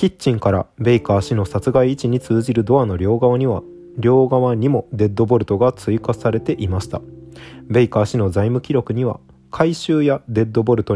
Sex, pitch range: male, 100-130 Hz